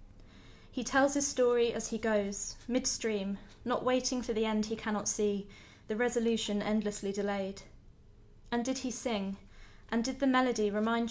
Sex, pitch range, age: female, 200-235 Hz, 20-39